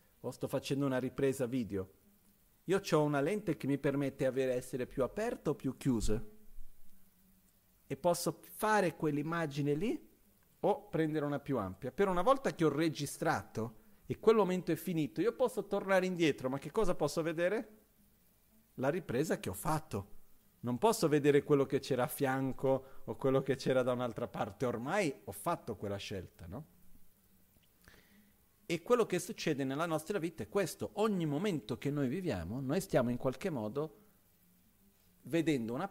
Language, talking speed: Italian, 160 wpm